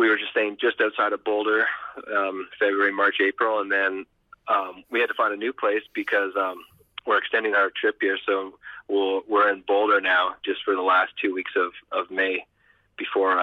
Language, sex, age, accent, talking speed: English, male, 30-49, American, 200 wpm